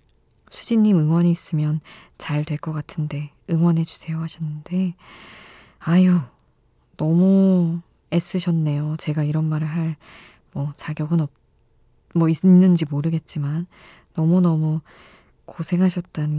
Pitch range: 150-180 Hz